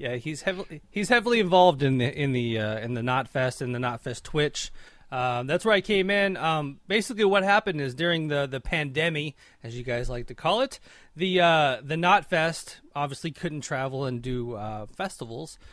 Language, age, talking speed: English, 30-49, 195 wpm